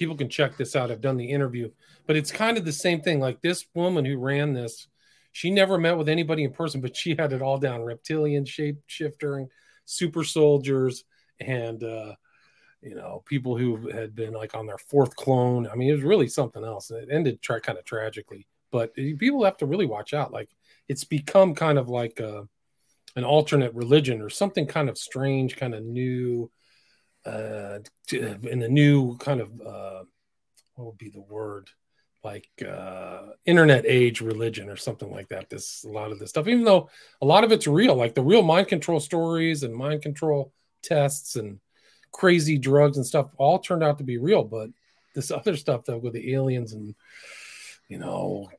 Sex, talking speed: male, 195 wpm